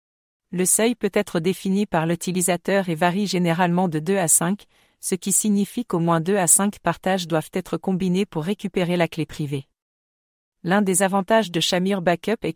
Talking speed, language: 180 wpm, English